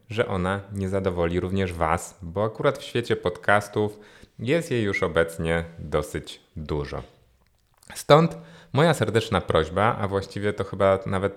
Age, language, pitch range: 30-49, Polish, 85-105 Hz